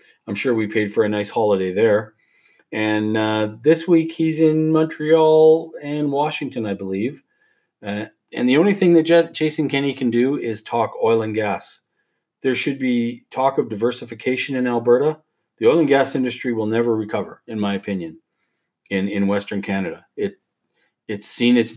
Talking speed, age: 170 wpm, 40-59